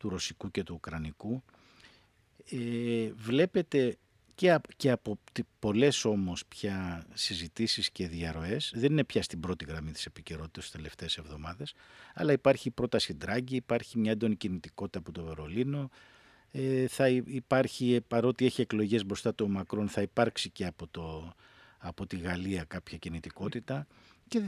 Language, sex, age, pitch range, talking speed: Greek, male, 50-69, 95-130 Hz, 150 wpm